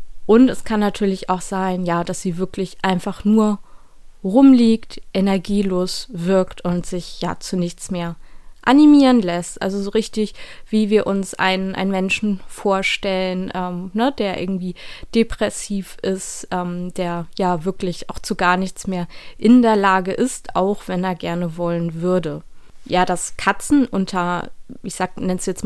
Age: 20-39